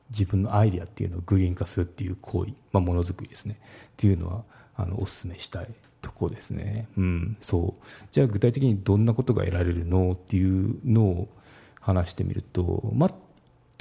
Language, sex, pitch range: Japanese, male, 95-115 Hz